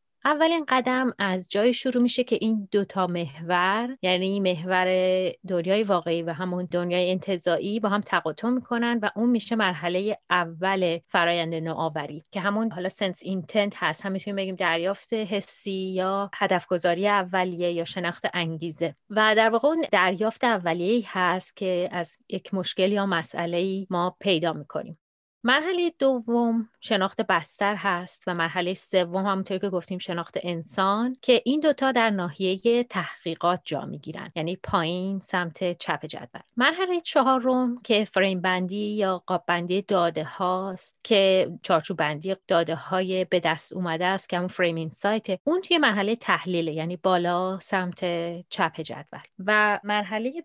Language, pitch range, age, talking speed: Persian, 180-220 Hz, 30-49, 145 wpm